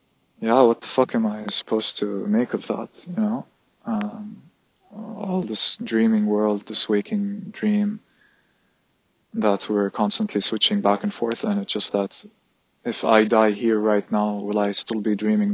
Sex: male